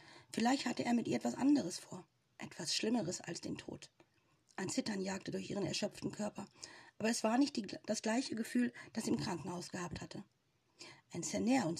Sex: female